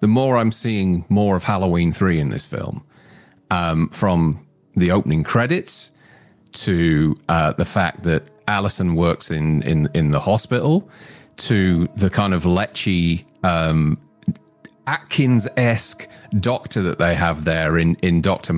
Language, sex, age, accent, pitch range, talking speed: English, male, 40-59, British, 85-110 Hz, 140 wpm